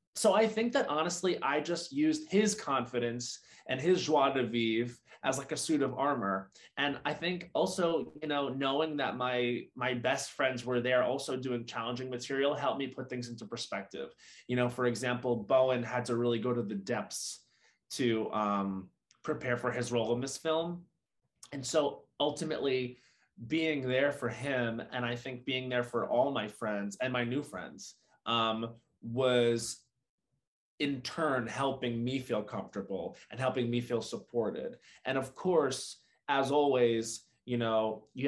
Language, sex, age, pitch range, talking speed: English, male, 20-39, 115-135 Hz, 170 wpm